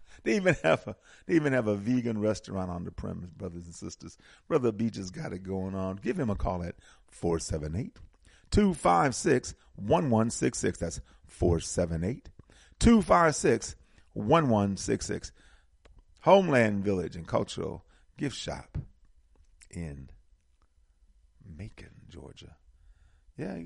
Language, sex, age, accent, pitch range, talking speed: English, male, 40-59, American, 80-115 Hz, 105 wpm